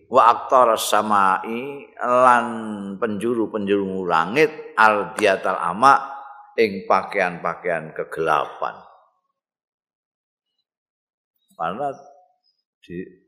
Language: Indonesian